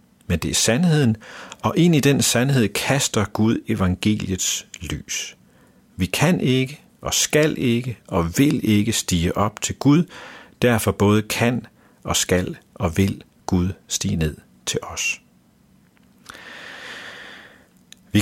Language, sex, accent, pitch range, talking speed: Danish, male, native, 90-120 Hz, 130 wpm